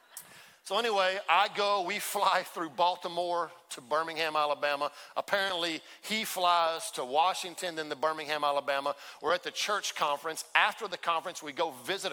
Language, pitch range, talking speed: English, 165-195 Hz, 155 wpm